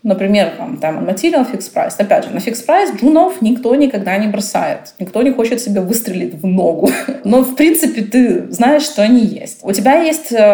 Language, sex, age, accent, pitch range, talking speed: Russian, female, 20-39, native, 200-275 Hz, 175 wpm